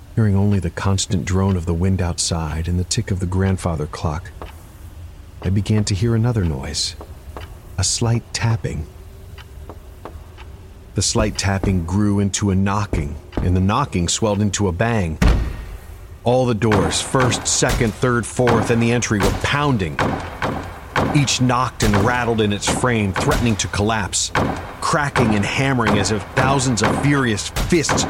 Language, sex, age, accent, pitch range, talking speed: English, male, 40-59, American, 95-125 Hz, 150 wpm